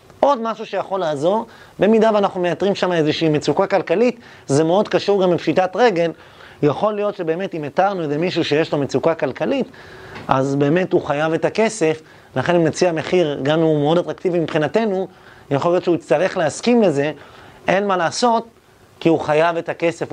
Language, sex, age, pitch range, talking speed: Hebrew, male, 30-49, 150-190 Hz, 175 wpm